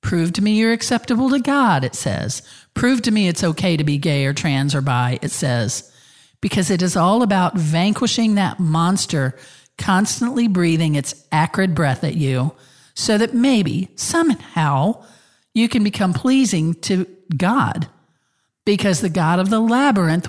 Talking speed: 160 wpm